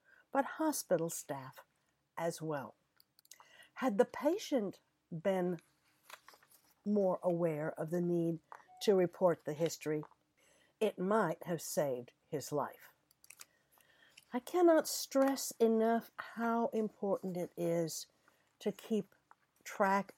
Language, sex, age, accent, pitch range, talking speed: English, female, 60-79, American, 170-225 Hz, 105 wpm